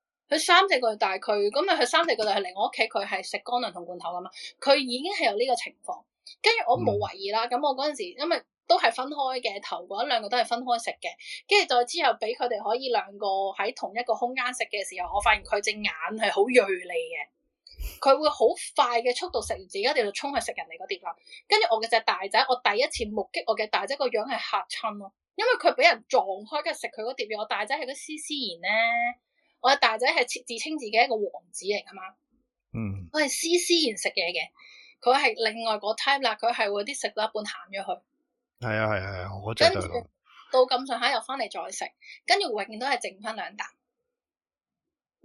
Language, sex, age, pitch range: Chinese, female, 10-29, 205-275 Hz